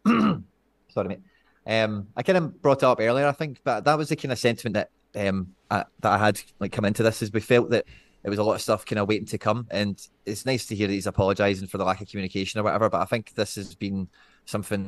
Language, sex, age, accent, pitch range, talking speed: English, male, 20-39, British, 95-110 Hz, 265 wpm